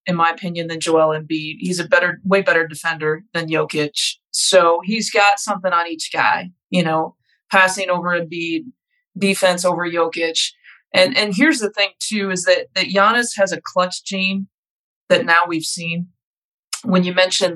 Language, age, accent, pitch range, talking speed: English, 20-39, American, 170-205 Hz, 170 wpm